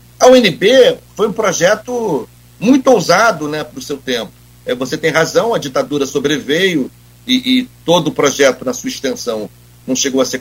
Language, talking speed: Portuguese, 180 wpm